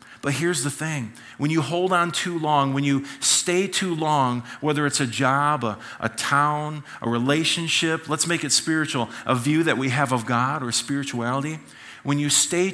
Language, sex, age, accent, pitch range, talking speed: English, male, 40-59, American, 120-150 Hz, 190 wpm